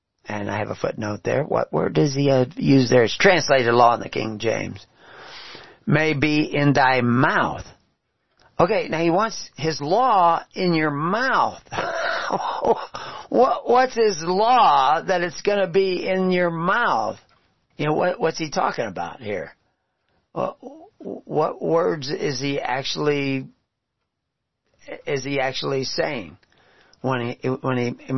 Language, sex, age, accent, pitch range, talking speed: English, male, 50-69, American, 125-180 Hz, 145 wpm